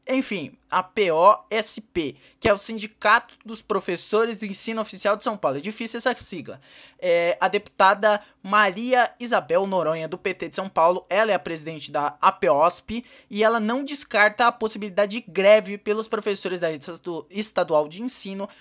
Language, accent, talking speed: Portuguese, Brazilian, 160 wpm